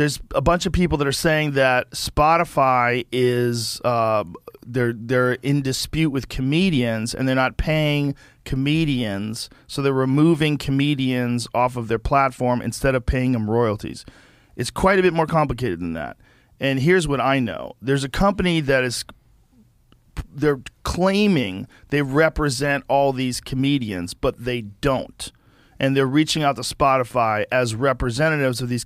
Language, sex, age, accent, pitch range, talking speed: English, male, 40-59, American, 120-145 Hz, 155 wpm